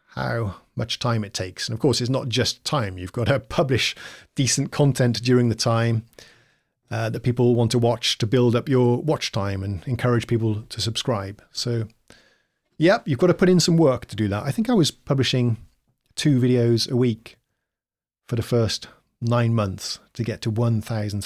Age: 40-59